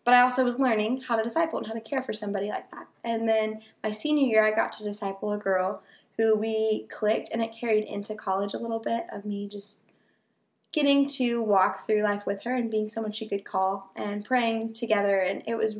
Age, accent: 20-39, American